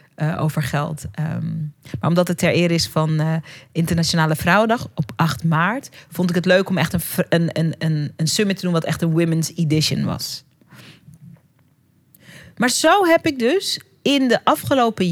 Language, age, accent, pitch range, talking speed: Dutch, 40-59, Dutch, 160-230 Hz, 175 wpm